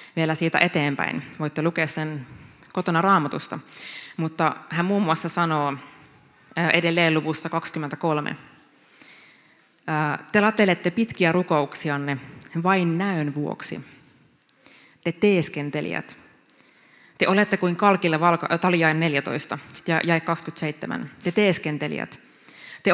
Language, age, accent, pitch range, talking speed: Finnish, 20-39, native, 150-175 Hz, 90 wpm